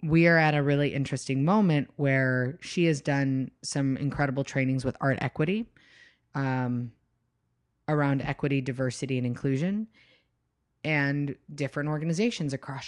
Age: 30-49